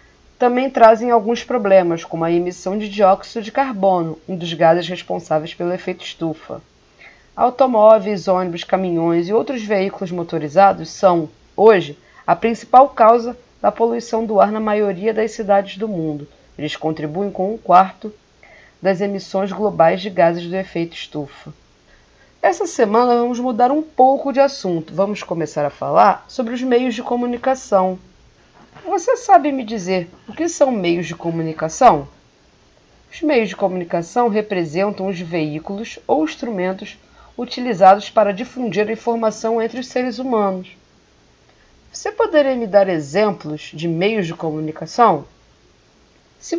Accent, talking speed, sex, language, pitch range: Brazilian, 140 wpm, female, Portuguese, 170-235 Hz